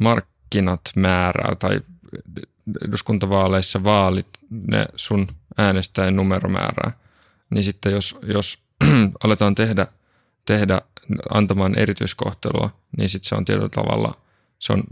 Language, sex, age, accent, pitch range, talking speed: Finnish, male, 20-39, native, 95-110 Hz, 105 wpm